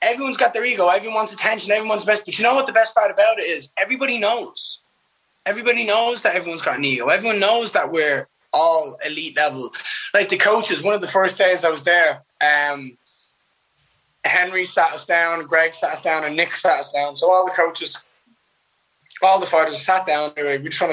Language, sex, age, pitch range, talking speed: English, male, 20-39, 150-210 Hz, 210 wpm